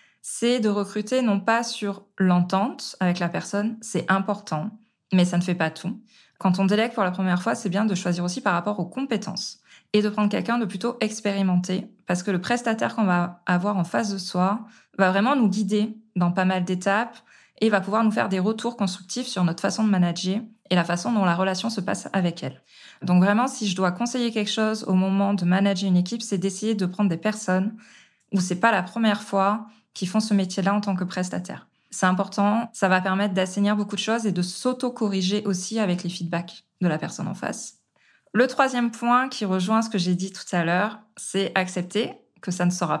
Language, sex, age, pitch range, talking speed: French, female, 20-39, 185-220 Hz, 220 wpm